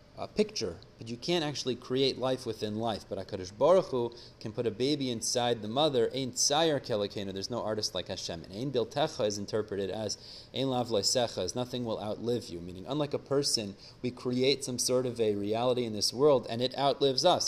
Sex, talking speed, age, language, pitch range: male, 190 wpm, 30-49, English, 110-140 Hz